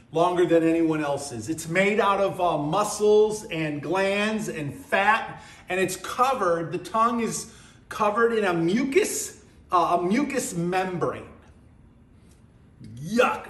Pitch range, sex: 175-220 Hz, male